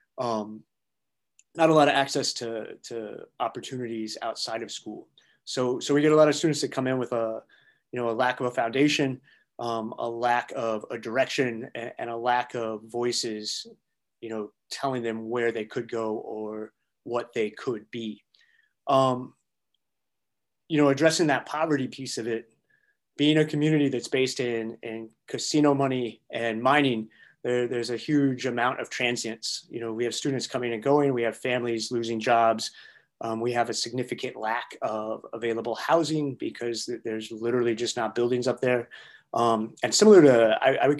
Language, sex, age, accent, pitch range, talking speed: English, male, 30-49, American, 115-140 Hz, 175 wpm